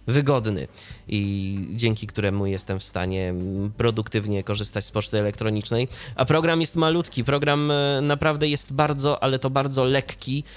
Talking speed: 135 wpm